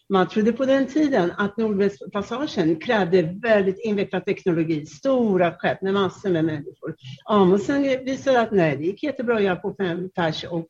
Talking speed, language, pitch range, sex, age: 170 wpm, Swedish, 190-245 Hz, female, 60-79